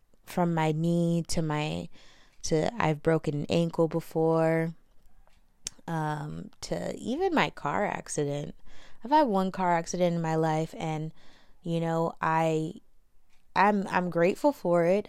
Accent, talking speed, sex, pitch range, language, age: American, 135 wpm, female, 165-195 Hz, English, 20-39